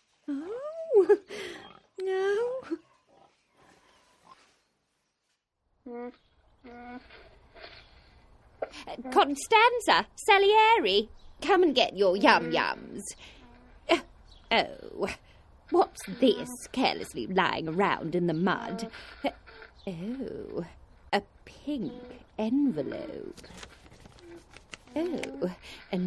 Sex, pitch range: female, 230-350 Hz